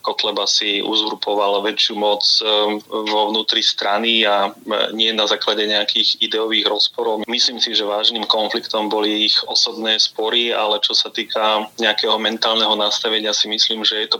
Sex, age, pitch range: male, 30-49, 105-110 Hz